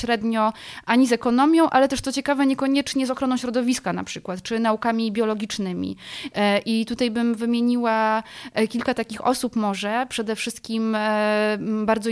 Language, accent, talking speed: Polish, native, 140 wpm